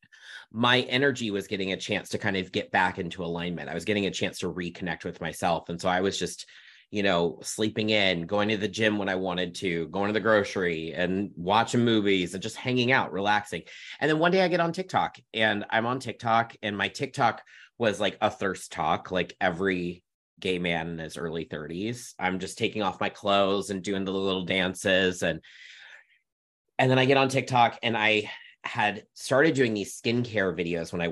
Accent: American